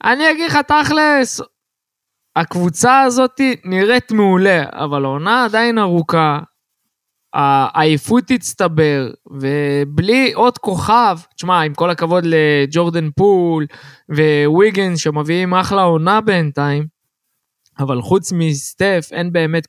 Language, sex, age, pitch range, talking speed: Hebrew, male, 20-39, 145-200 Hz, 100 wpm